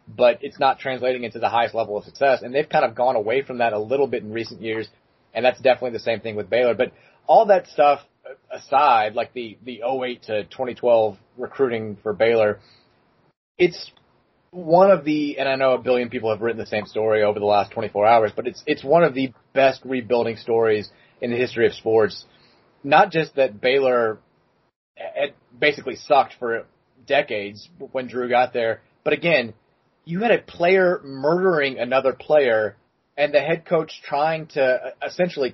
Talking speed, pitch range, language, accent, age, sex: 180 wpm, 115-140 Hz, English, American, 30-49, male